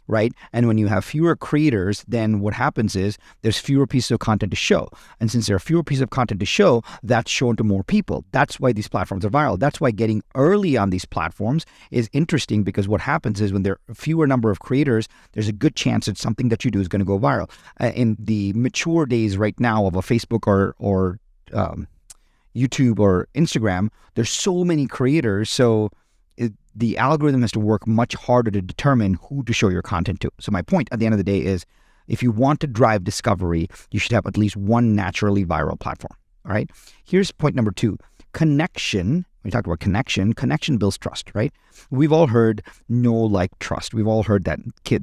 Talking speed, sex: 210 wpm, male